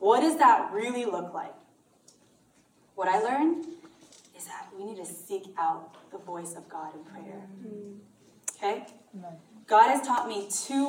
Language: English